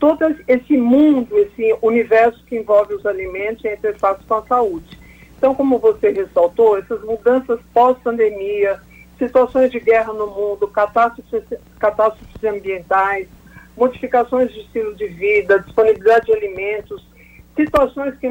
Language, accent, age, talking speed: Portuguese, Brazilian, 50-69, 130 wpm